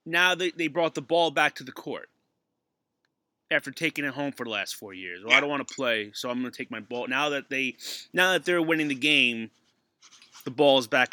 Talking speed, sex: 245 wpm, male